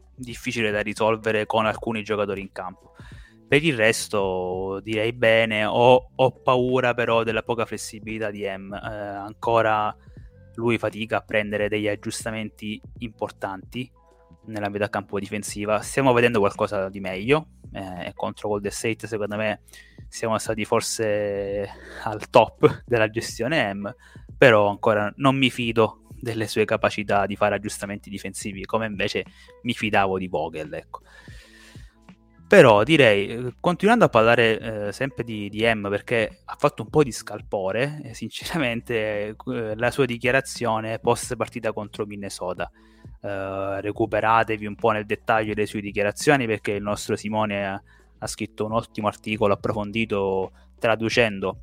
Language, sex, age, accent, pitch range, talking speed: Italian, male, 20-39, native, 105-115 Hz, 140 wpm